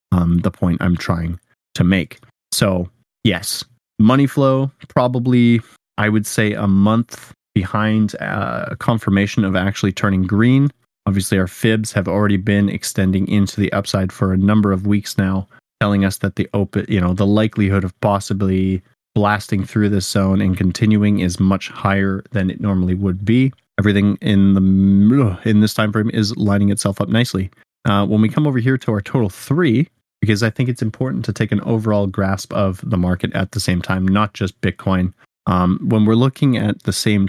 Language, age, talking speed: English, 30-49, 180 wpm